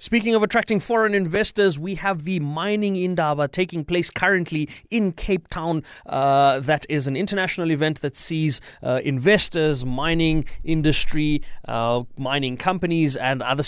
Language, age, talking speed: English, 30-49, 145 wpm